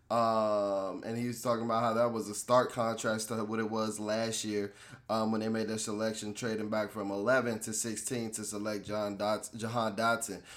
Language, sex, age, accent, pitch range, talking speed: English, male, 20-39, American, 120-145 Hz, 205 wpm